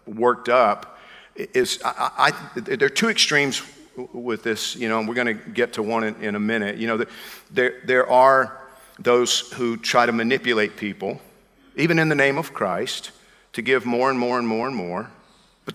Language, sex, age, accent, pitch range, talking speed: English, male, 50-69, American, 115-135 Hz, 200 wpm